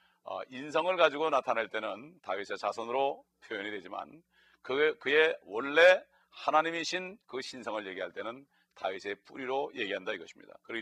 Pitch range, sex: 140-185 Hz, male